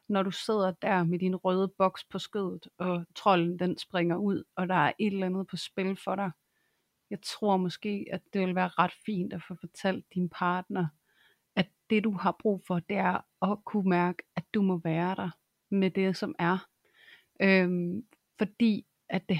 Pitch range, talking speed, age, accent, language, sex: 175-195 Hz, 195 wpm, 30-49, native, Danish, female